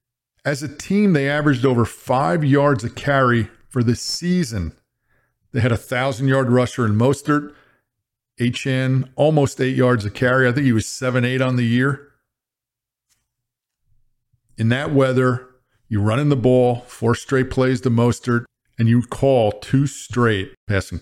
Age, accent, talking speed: 40-59, American, 155 wpm